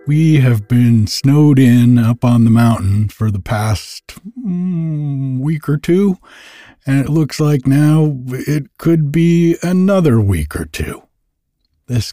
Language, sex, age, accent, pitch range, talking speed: English, male, 60-79, American, 105-140 Hz, 145 wpm